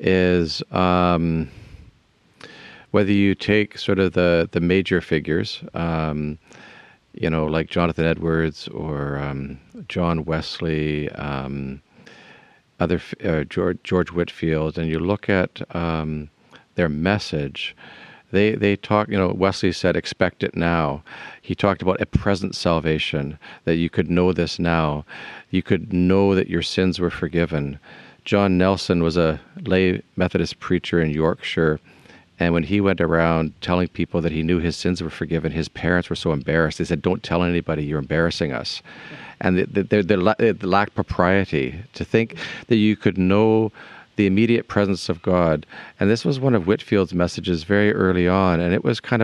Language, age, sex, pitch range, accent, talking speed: English, 50-69, male, 80-100 Hz, American, 155 wpm